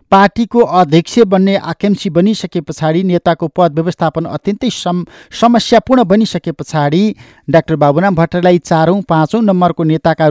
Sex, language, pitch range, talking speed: male, English, 150-195 Hz, 150 wpm